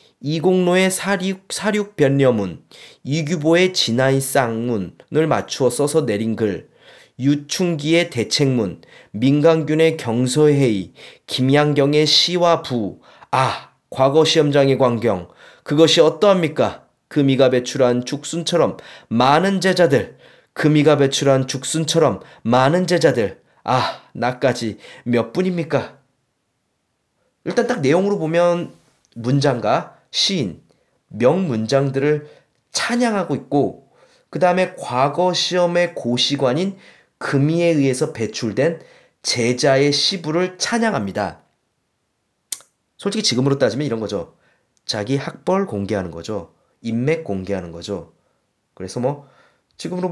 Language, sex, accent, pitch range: Korean, male, native, 130-175 Hz